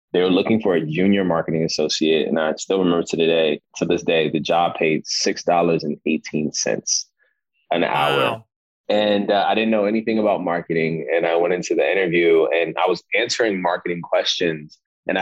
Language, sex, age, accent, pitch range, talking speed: English, male, 20-39, American, 80-90 Hz, 180 wpm